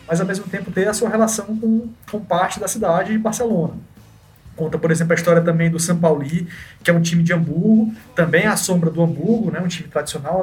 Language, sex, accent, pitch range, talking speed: Portuguese, male, Brazilian, 160-195 Hz, 225 wpm